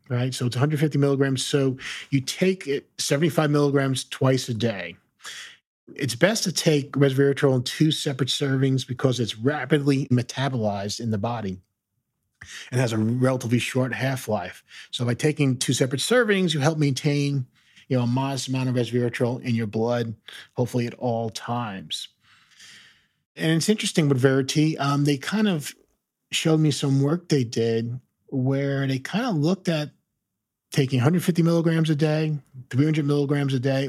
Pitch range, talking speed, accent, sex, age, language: 120-145 Hz, 165 wpm, American, male, 40-59, English